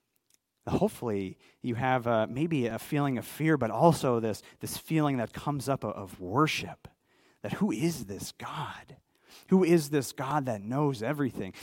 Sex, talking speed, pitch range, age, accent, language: male, 165 wpm, 120-155 Hz, 30-49, American, English